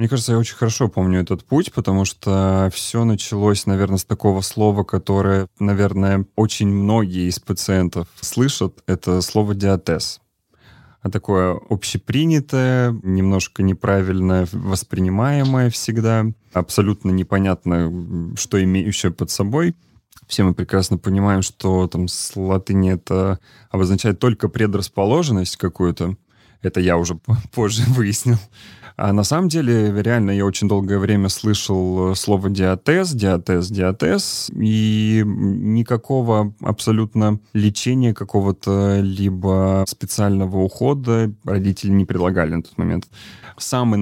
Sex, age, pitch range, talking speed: male, 20-39, 95-110 Hz, 115 wpm